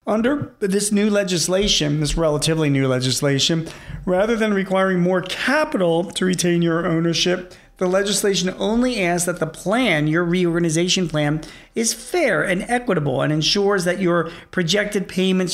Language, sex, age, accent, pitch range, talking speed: English, male, 40-59, American, 150-190 Hz, 145 wpm